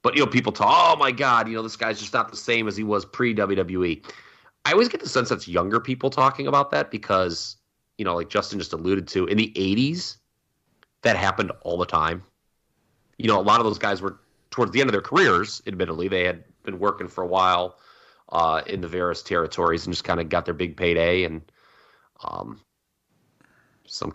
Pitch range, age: 90-110 Hz, 30-49